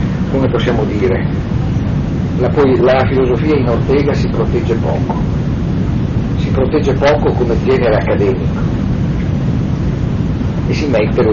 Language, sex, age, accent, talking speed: Italian, male, 50-69, native, 115 wpm